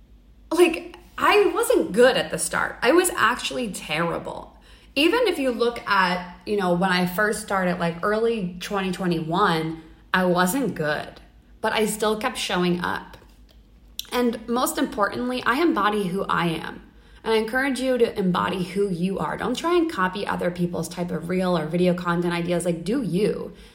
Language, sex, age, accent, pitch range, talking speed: English, female, 20-39, American, 175-225 Hz, 170 wpm